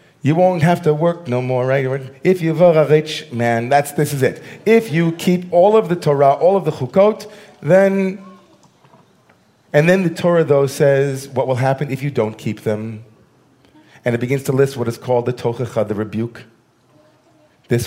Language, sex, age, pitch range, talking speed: English, male, 40-59, 120-150 Hz, 190 wpm